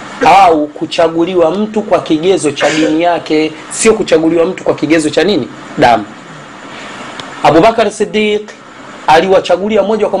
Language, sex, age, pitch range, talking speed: Swahili, male, 40-59, 160-210 Hz, 125 wpm